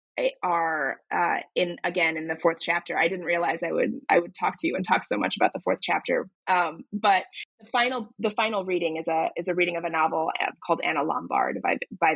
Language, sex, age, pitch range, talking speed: English, female, 20-39, 170-210 Hz, 225 wpm